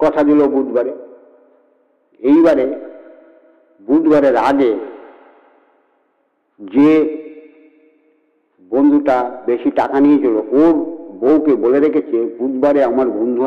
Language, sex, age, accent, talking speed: English, male, 60-79, Indian, 85 wpm